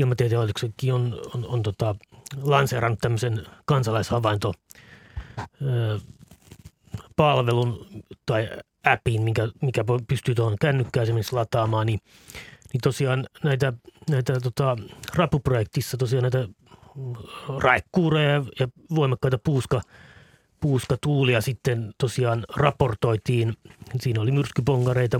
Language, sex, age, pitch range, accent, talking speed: Finnish, male, 30-49, 115-135 Hz, native, 85 wpm